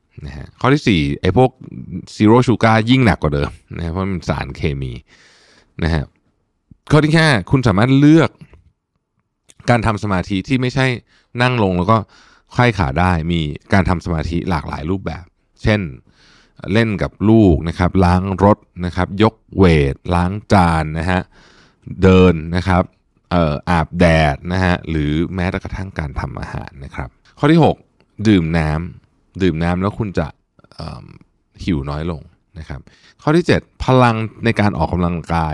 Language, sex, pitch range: Thai, male, 80-105 Hz